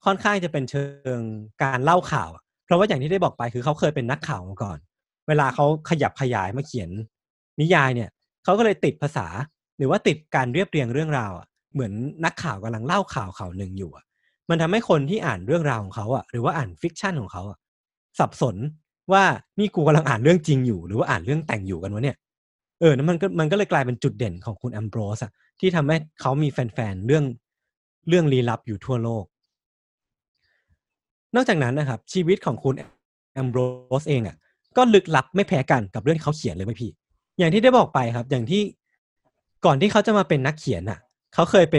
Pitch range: 120-165 Hz